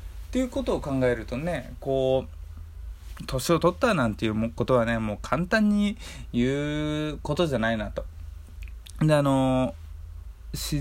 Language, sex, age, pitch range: Japanese, male, 20-39, 105-150 Hz